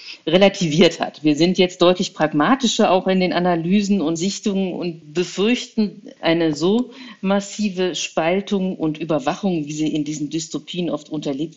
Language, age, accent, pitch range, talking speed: German, 50-69, German, 150-200 Hz, 145 wpm